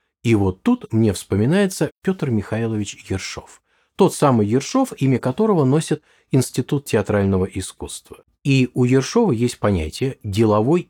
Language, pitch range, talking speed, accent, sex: Russian, 100-155 Hz, 125 wpm, native, male